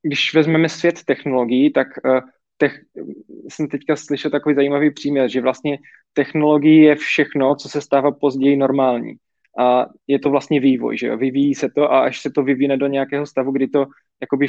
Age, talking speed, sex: 20-39, 180 wpm, male